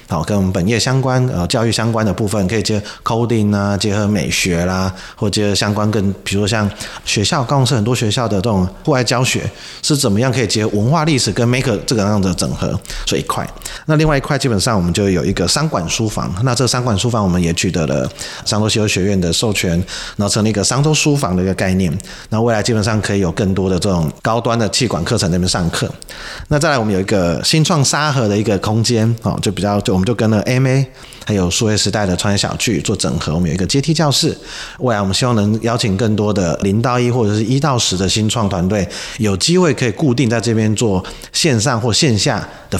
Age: 30-49